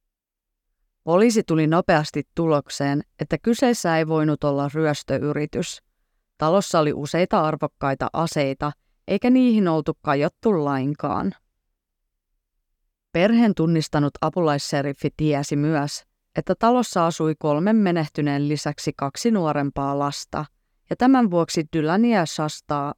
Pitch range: 145-180 Hz